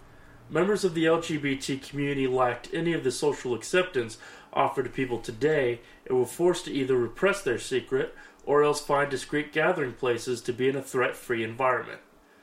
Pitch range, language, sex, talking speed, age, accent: 125-165 Hz, English, male, 170 wpm, 30-49, American